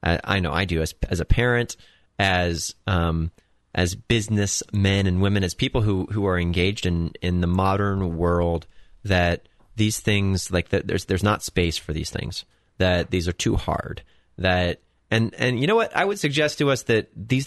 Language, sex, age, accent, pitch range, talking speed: English, male, 30-49, American, 90-110 Hz, 190 wpm